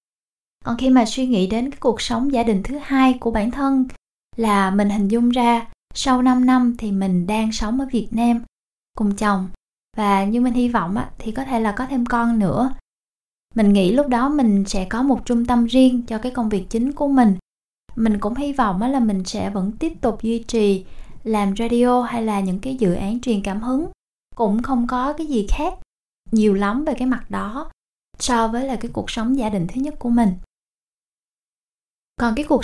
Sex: female